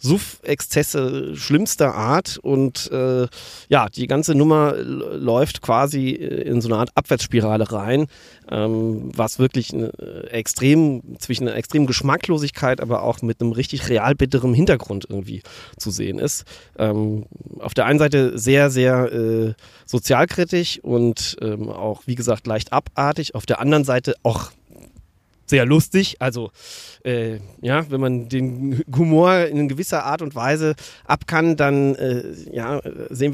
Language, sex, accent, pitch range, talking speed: German, male, German, 125-170 Hz, 145 wpm